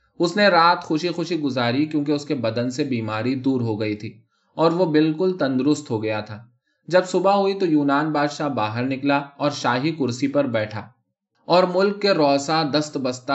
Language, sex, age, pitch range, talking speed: Urdu, male, 20-39, 115-155 Hz, 190 wpm